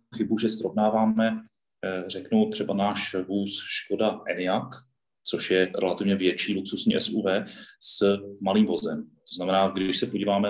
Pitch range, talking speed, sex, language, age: 95-115 Hz, 130 wpm, male, Czech, 30-49